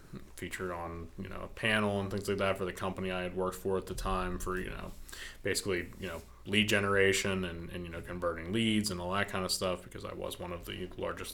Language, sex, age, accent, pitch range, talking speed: English, male, 20-39, American, 85-95 Hz, 250 wpm